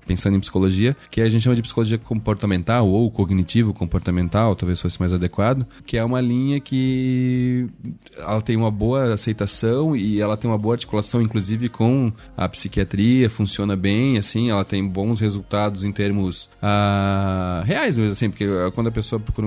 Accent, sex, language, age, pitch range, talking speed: Brazilian, male, Portuguese, 20-39, 100-120 Hz, 170 wpm